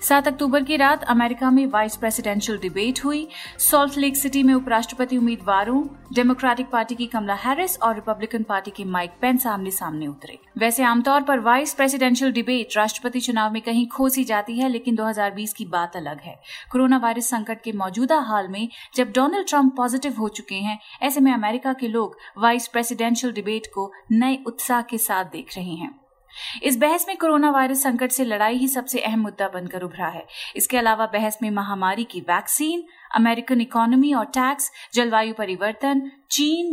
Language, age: Hindi, 30-49